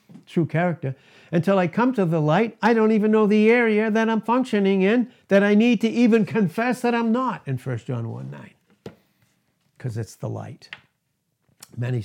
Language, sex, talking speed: English, male, 185 wpm